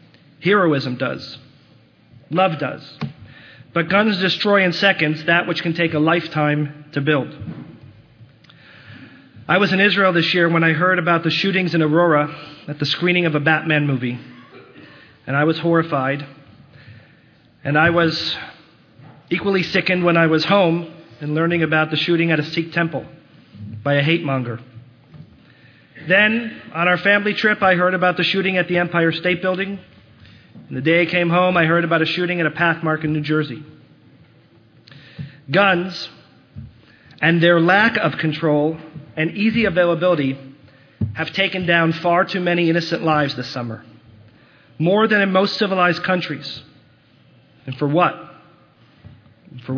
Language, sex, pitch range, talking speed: English, male, 135-175 Hz, 150 wpm